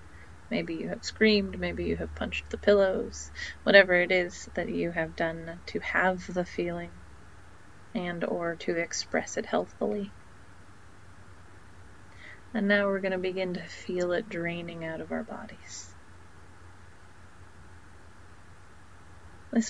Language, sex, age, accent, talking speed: English, female, 30-49, American, 130 wpm